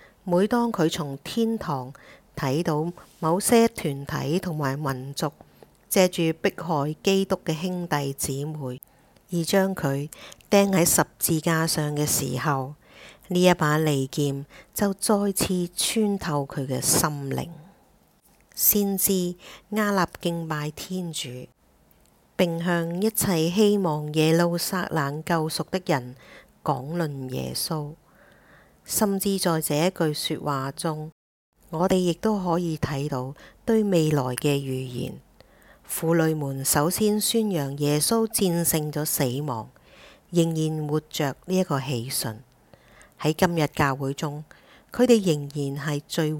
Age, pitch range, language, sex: 50-69, 145-180 Hz, English, female